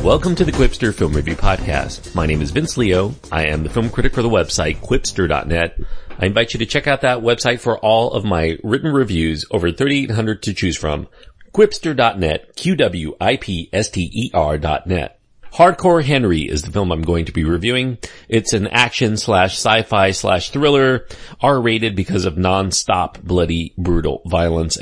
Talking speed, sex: 160 wpm, male